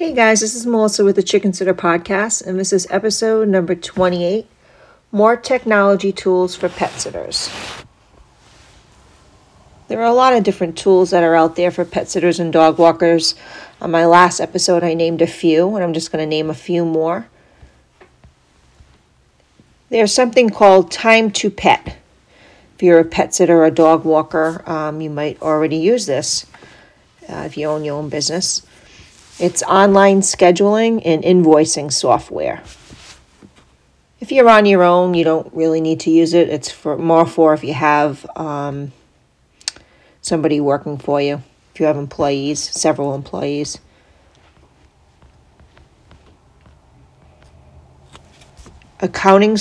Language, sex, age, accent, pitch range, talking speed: English, female, 40-59, American, 155-195 Hz, 145 wpm